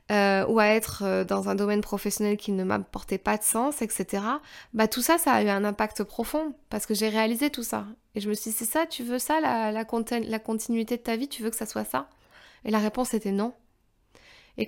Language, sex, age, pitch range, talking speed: French, female, 20-39, 210-255 Hz, 245 wpm